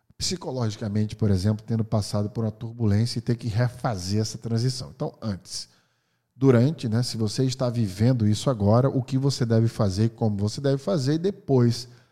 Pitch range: 115-140 Hz